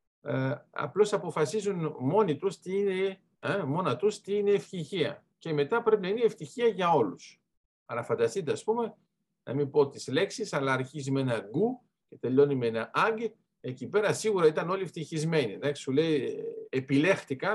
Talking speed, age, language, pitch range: 150 wpm, 50-69, Greek, 145-200 Hz